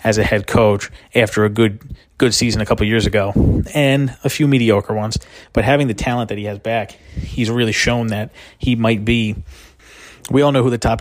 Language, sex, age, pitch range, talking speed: English, male, 30-49, 105-120 Hz, 215 wpm